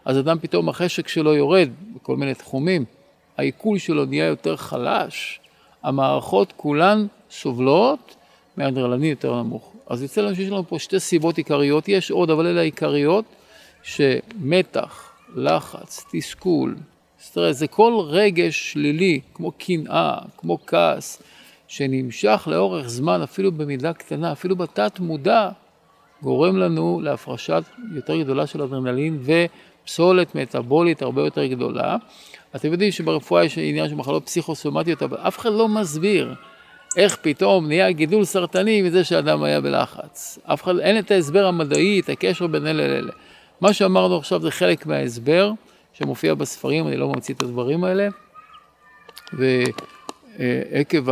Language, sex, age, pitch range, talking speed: Hebrew, male, 50-69, 135-190 Hz, 135 wpm